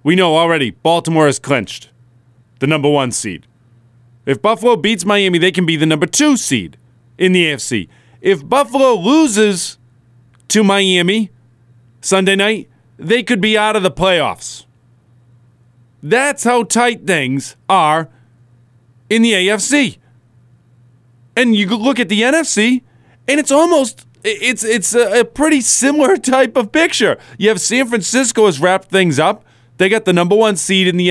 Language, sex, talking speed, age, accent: English, male, 155 wpm, 30-49, American